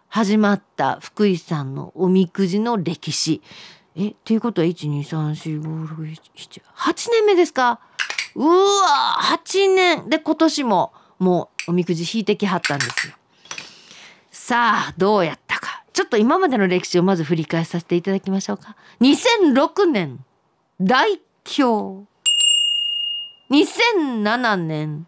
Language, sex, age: Japanese, female, 40-59